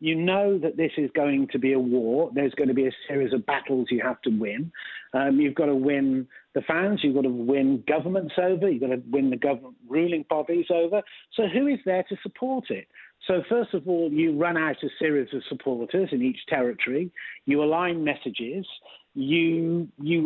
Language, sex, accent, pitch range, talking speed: English, male, British, 135-180 Hz, 205 wpm